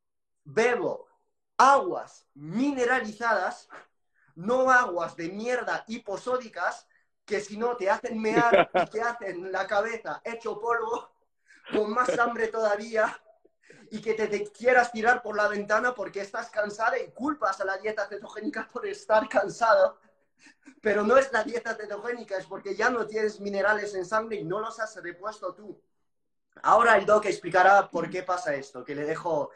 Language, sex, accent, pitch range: Spanish, male, Spanish, 190-230 Hz